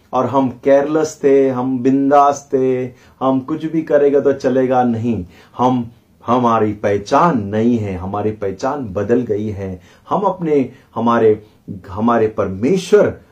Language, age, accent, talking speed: Hindi, 30-49, native, 130 wpm